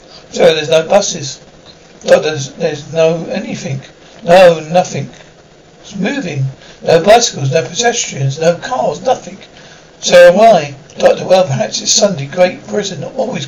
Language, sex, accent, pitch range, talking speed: English, male, British, 155-180 Hz, 140 wpm